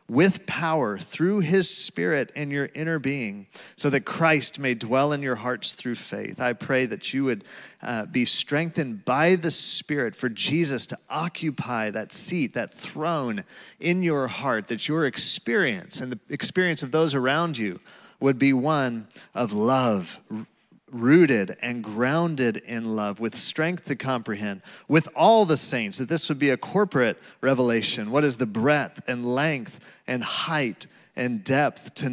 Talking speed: 160 wpm